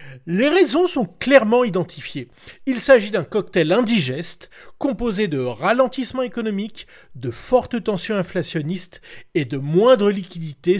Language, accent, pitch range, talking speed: French, French, 170-255 Hz, 120 wpm